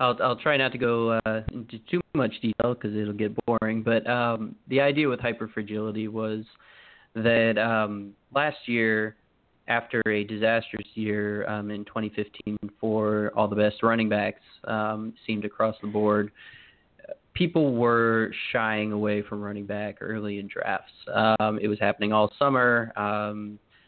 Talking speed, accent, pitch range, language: 155 wpm, American, 105-115 Hz, English